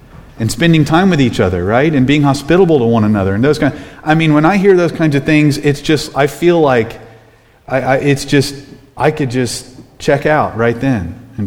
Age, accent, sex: 30-49, American, male